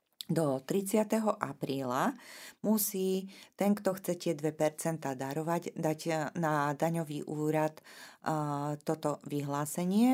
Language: Slovak